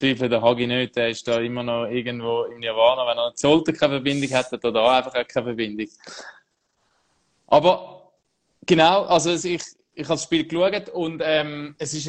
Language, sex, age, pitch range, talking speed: German, male, 20-39, 135-165 Hz, 175 wpm